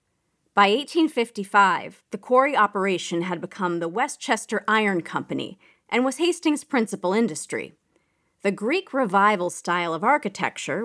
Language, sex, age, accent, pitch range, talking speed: English, female, 40-59, American, 175-250 Hz, 120 wpm